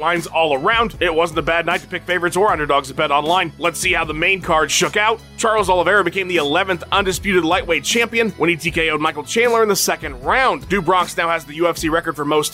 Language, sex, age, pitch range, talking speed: English, male, 30-49, 165-210 Hz, 235 wpm